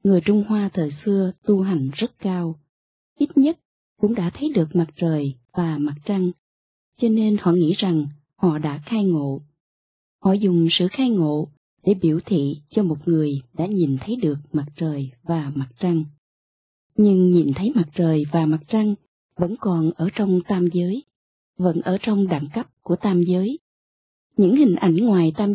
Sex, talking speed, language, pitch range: female, 180 wpm, Vietnamese, 155-210 Hz